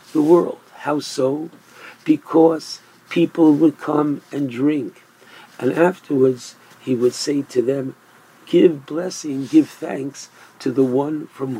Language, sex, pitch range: English, male, 140-185 Hz